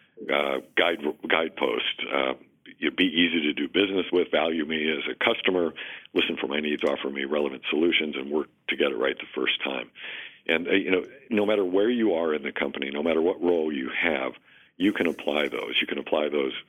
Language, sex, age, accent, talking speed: English, male, 60-79, American, 210 wpm